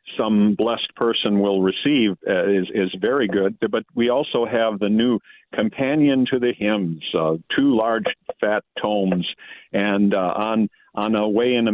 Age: 50-69